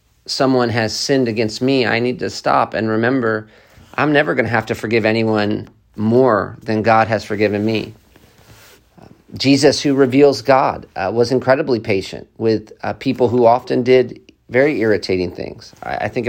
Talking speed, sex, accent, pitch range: 165 wpm, male, American, 110-130 Hz